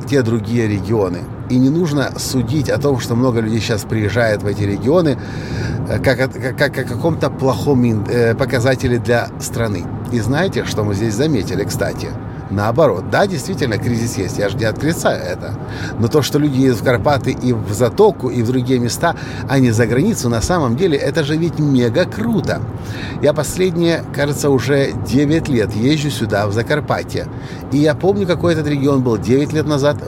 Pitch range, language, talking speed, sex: 115-145 Hz, Russian, 180 wpm, male